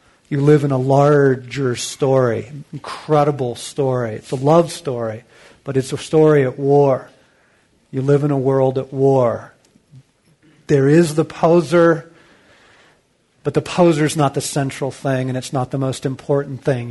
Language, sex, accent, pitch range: English, male, American, 125-150 Hz